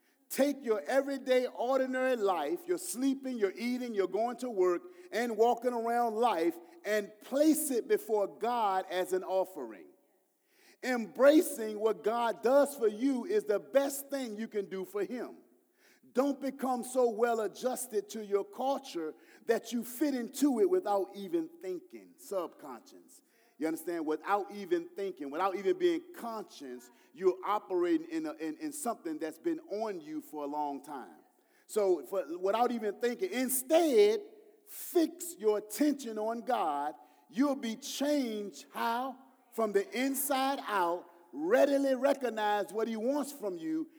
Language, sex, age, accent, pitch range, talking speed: English, male, 40-59, American, 210-295 Hz, 145 wpm